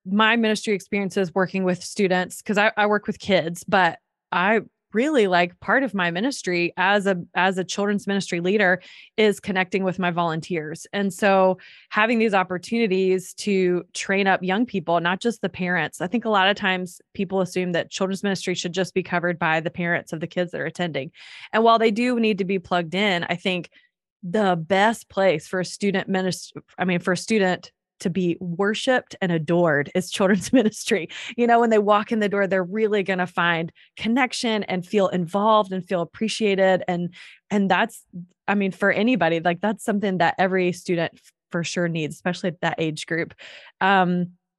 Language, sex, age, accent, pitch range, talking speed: English, female, 20-39, American, 175-210 Hz, 190 wpm